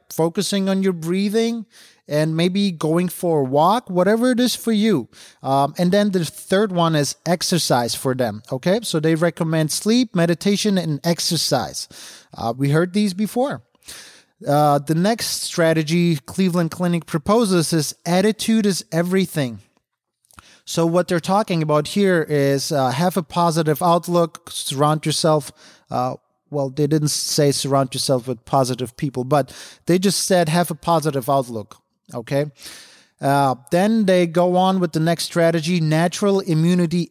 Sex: male